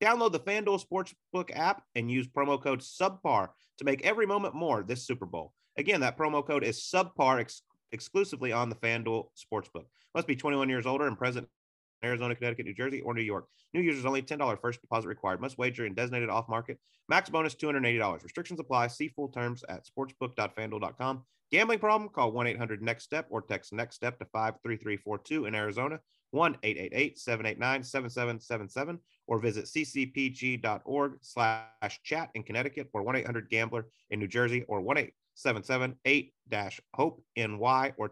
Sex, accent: male, American